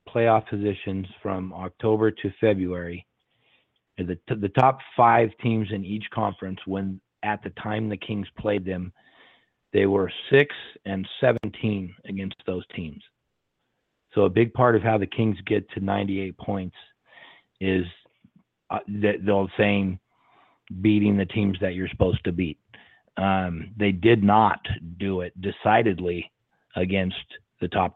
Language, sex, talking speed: English, male, 145 wpm